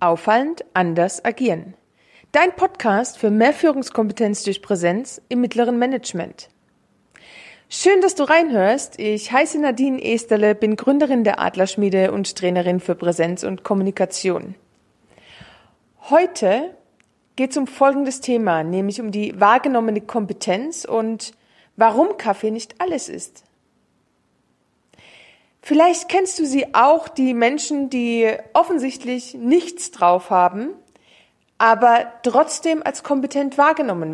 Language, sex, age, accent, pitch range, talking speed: German, female, 30-49, German, 205-285 Hz, 115 wpm